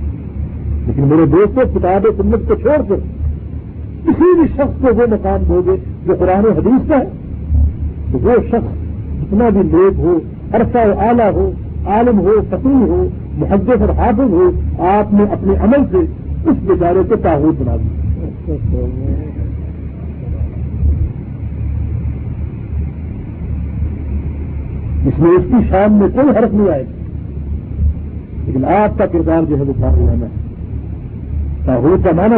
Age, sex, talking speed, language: 50-69, male, 130 wpm, Urdu